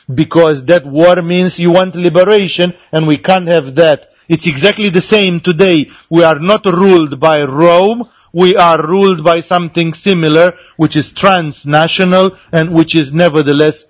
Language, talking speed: English, 155 wpm